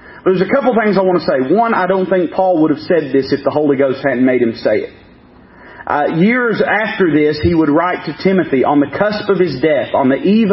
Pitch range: 180-255 Hz